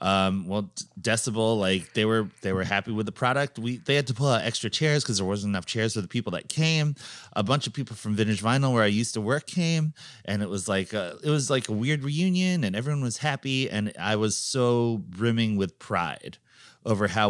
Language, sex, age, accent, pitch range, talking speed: English, male, 30-49, American, 100-135 Hz, 230 wpm